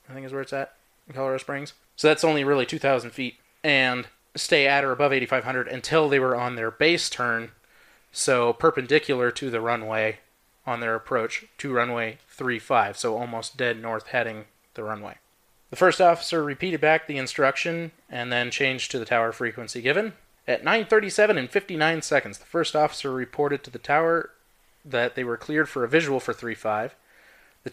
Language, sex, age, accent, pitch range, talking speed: English, male, 20-39, American, 120-155 Hz, 180 wpm